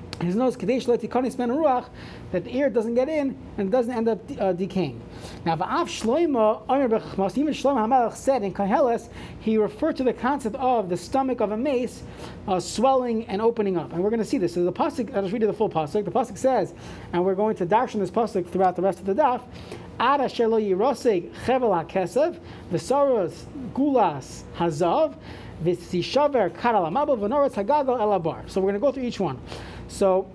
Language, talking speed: English, 190 wpm